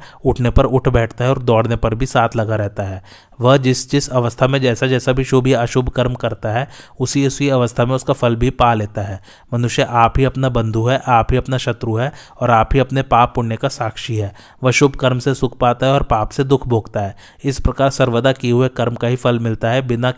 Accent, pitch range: native, 115-130 Hz